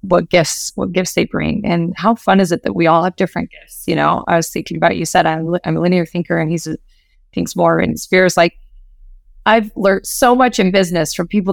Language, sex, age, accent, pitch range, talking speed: English, female, 30-49, American, 165-195 Hz, 245 wpm